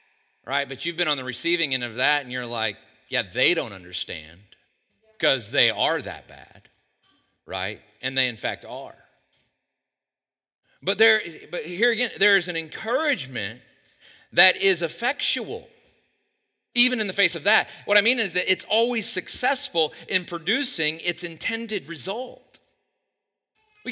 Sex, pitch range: male, 155-230 Hz